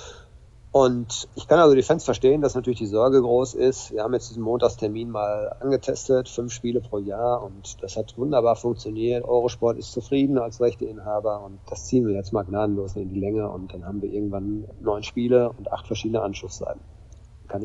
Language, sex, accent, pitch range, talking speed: German, male, German, 105-120 Hz, 190 wpm